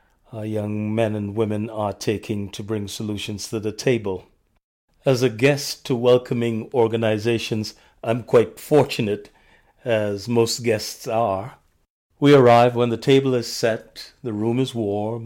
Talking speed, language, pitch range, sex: 145 wpm, English, 105-125 Hz, male